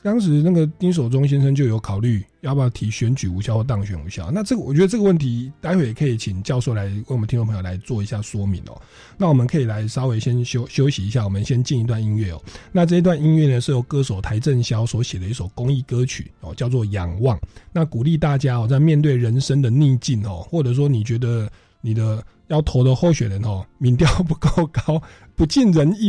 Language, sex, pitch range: Chinese, male, 105-150 Hz